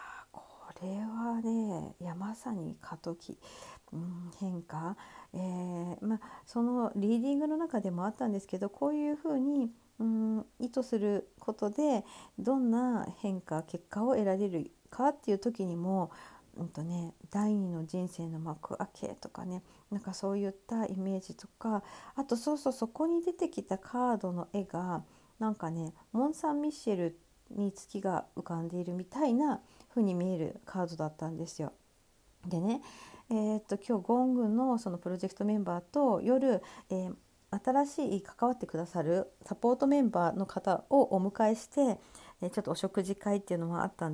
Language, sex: Japanese, female